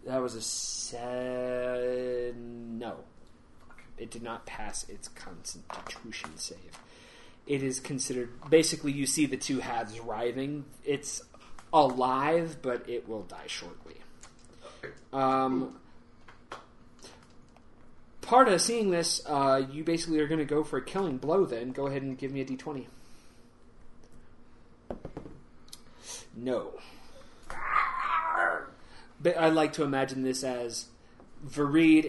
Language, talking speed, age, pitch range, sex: English, 115 wpm, 30-49, 125-140 Hz, male